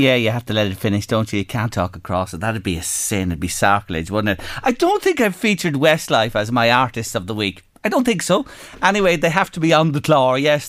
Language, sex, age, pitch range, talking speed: English, male, 40-59, 100-145 Hz, 270 wpm